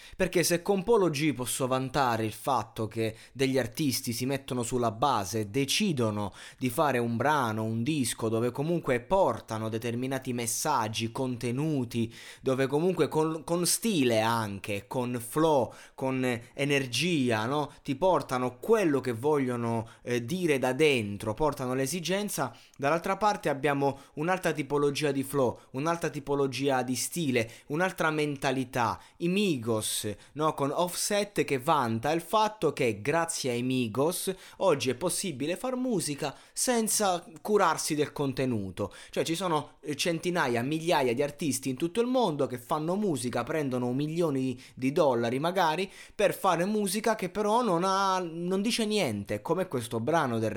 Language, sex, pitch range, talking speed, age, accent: Italian, male, 120-170 Hz, 140 wpm, 20-39, native